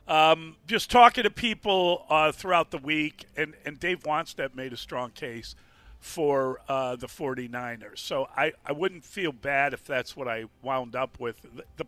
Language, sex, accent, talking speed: English, male, American, 175 wpm